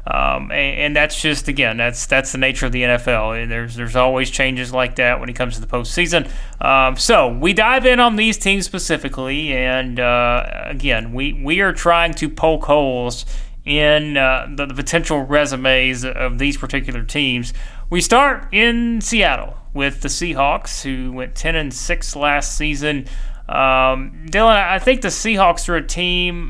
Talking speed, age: 175 wpm, 30-49